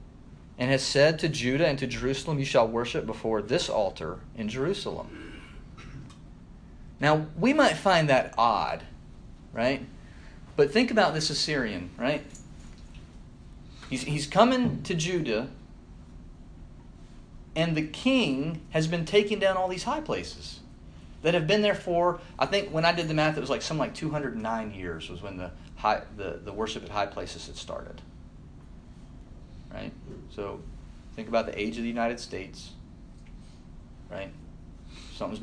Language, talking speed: English, 145 wpm